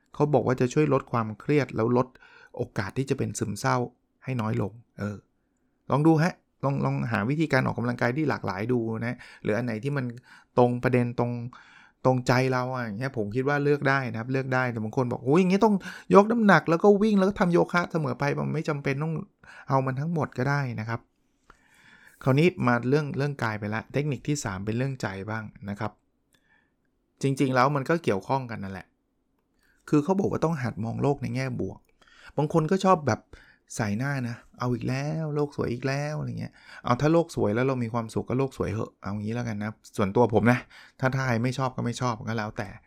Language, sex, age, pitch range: Thai, male, 20-39, 120-150 Hz